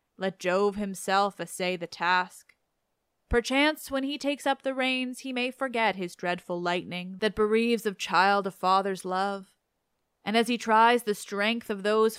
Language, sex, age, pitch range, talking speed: English, female, 20-39, 185-230 Hz, 165 wpm